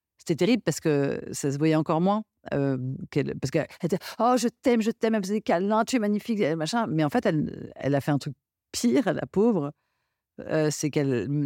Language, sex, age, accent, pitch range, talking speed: French, female, 50-69, French, 135-185 Hz, 230 wpm